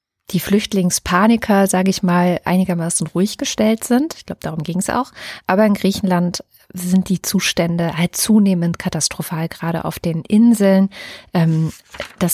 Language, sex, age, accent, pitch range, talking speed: German, female, 30-49, German, 170-200 Hz, 140 wpm